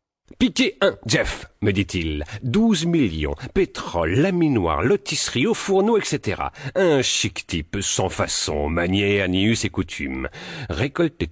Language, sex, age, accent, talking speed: French, male, 40-59, French, 145 wpm